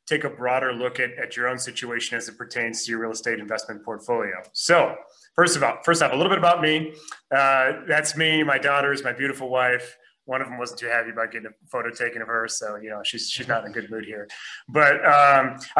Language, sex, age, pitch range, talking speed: English, male, 30-49, 125-150 Hz, 240 wpm